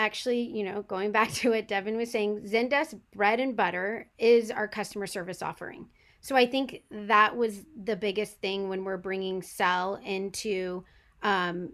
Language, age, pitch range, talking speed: English, 30-49, 190-225 Hz, 170 wpm